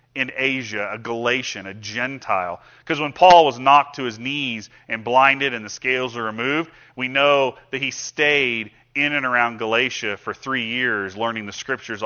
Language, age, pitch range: English, 30-49, 115-140 Hz